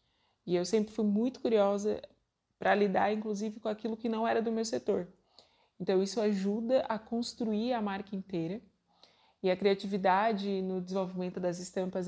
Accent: Brazilian